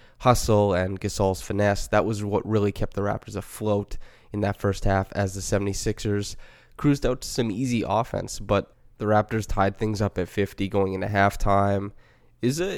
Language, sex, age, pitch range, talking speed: English, male, 20-39, 100-110 Hz, 175 wpm